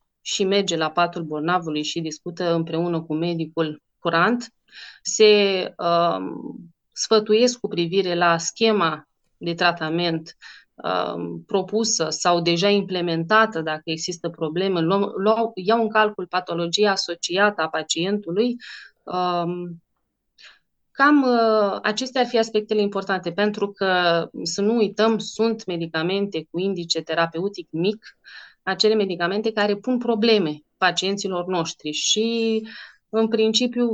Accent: native